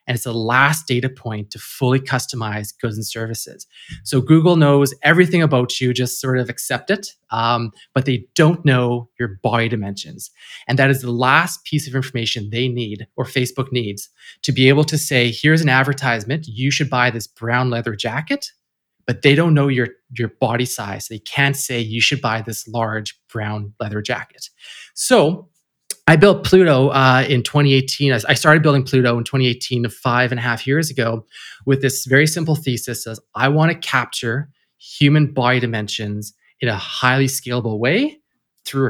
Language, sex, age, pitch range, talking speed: English, male, 30-49, 120-140 Hz, 180 wpm